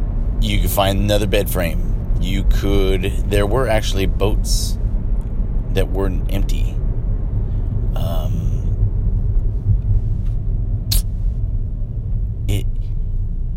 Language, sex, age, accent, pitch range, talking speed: English, male, 30-49, American, 90-105 Hz, 75 wpm